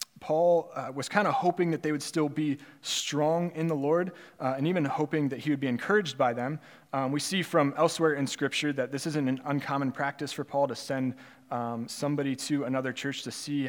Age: 20-39